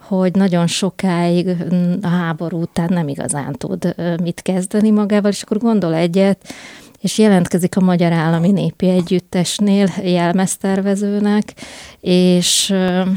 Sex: female